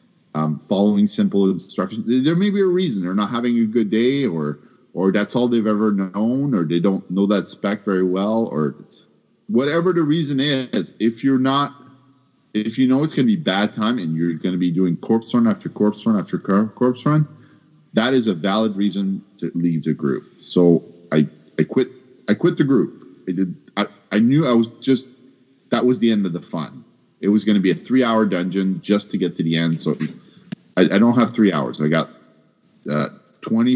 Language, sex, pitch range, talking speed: English, male, 95-135 Hz, 210 wpm